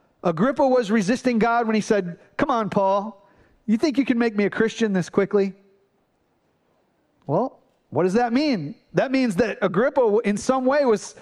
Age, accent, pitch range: 40-59, American, 190-240 Hz